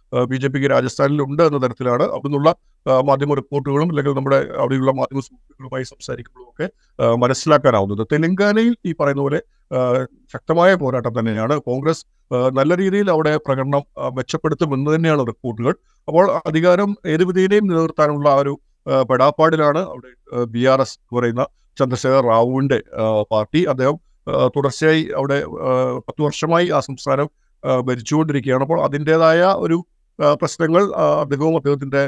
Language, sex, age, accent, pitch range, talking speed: Malayalam, male, 50-69, native, 130-165 Hz, 115 wpm